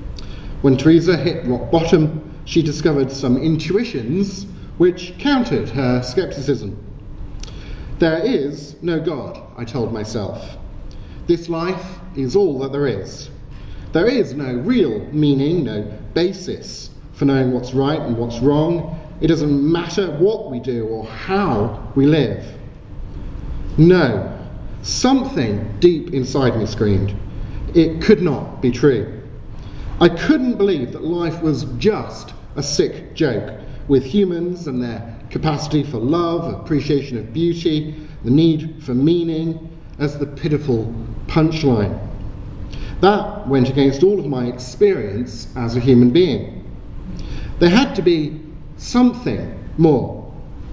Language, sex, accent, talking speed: English, male, British, 125 wpm